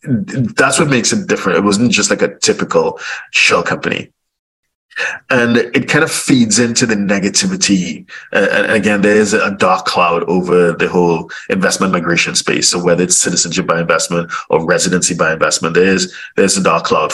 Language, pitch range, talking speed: English, 90-100 Hz, 175 wpm